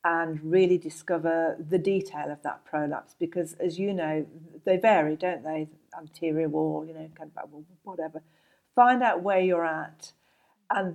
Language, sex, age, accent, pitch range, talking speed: English, female, 50-69, British, 165-195 Hz, 150 wpm